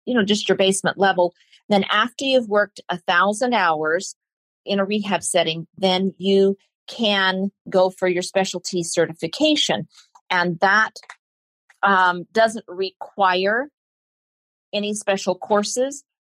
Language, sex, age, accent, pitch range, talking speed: English, female, 40-59, American, 165-195 Hz, 120 wpm